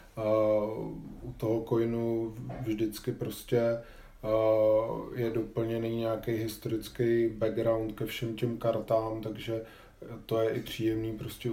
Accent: native